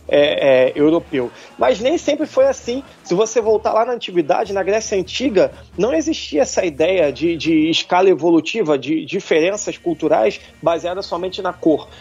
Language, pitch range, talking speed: Portuguese, 155-240 Hz, 150 wpm